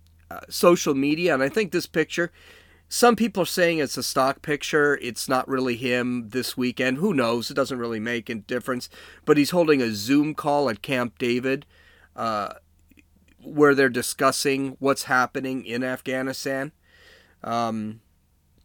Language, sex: English, male